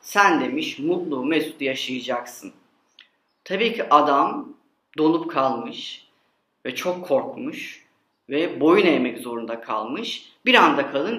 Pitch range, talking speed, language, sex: 155-230 Hz, 115 wpm, Turkish, female